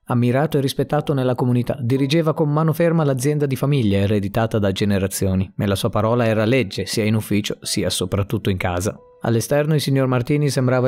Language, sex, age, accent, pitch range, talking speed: Italian, male, 30-49, native, 110-155 Hz, 180 wpm